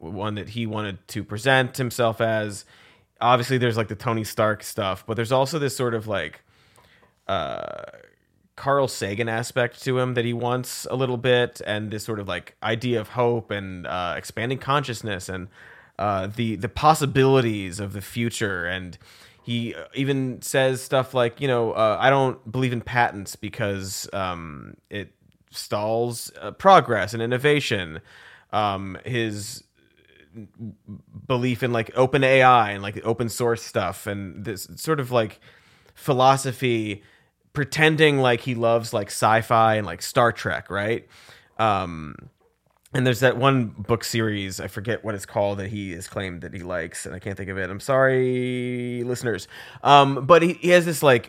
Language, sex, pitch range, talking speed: English, male, 100-130 Hz, 165 wpm